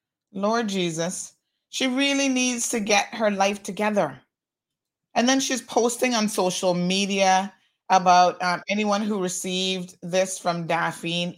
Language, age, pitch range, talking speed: English, 30-49, 180-245 Hz, 130 wpm